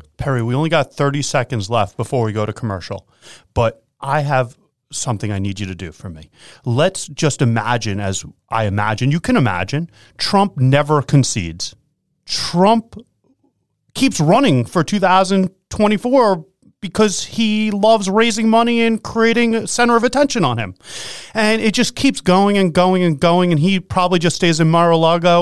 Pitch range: 130-195 Hz